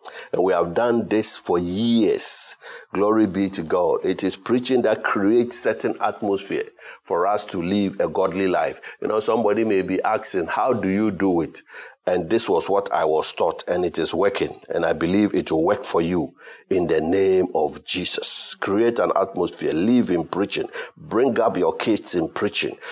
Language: English